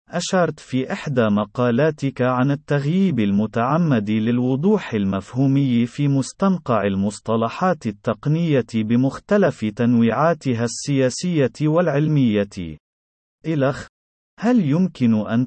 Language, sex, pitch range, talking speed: Arabic, male, 110-155 Hz, 80 wpm